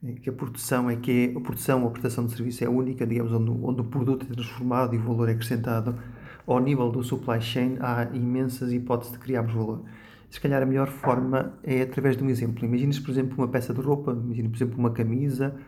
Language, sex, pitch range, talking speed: English, male, 120-135 Hz, 230 wpm